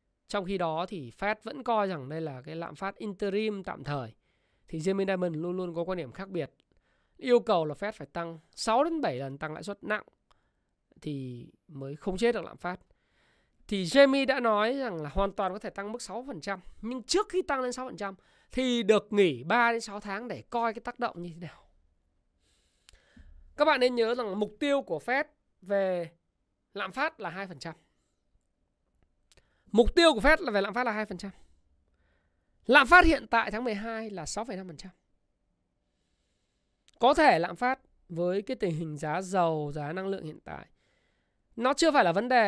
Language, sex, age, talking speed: Vietnamese, male, 20-39, 190 wpm